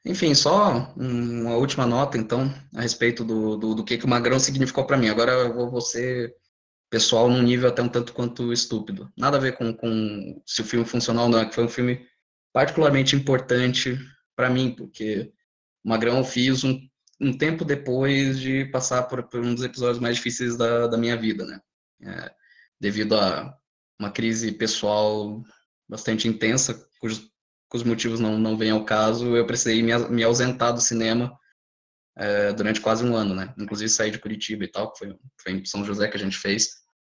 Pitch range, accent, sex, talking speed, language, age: 110-125 Hz, Brazilian, male, 190 wpm, Portuguese, 20-39